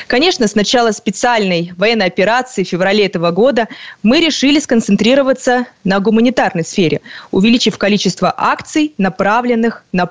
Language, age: Russian, 20-39